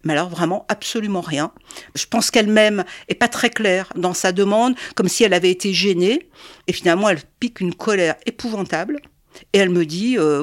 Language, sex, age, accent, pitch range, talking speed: French, female, 50-69, French, 170-210 Hz, 190 wpm